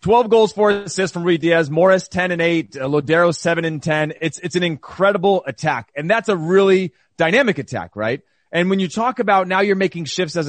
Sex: male